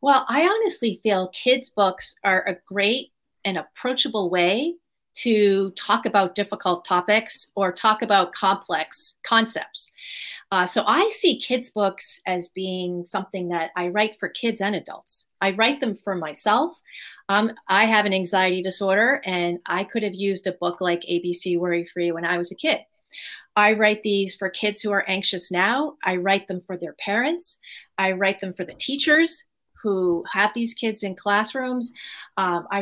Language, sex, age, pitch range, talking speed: English, female, 40-59, 185-220 Hz, 170 wpm